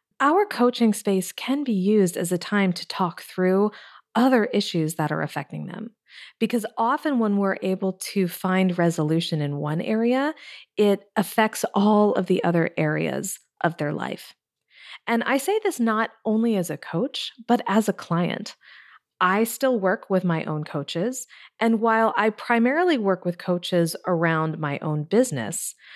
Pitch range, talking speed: 170-235 Hz, 160 wpm